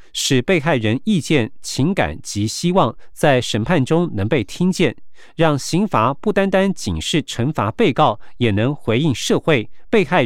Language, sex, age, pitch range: Chinese, male, 50-69, 120-180 Hz